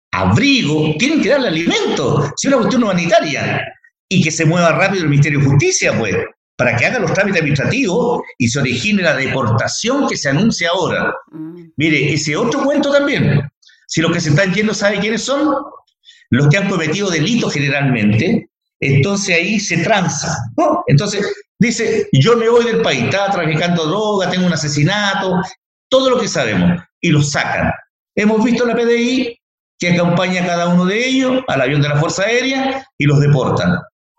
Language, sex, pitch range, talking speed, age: Spanish, male, 155-235 Hz, 175 wpm, 50-69